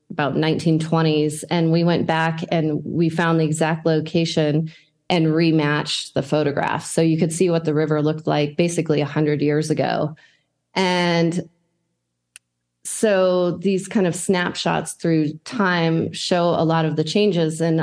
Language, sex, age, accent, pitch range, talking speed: English, female, 30-49, American, 155-175 Hz, 150 wpm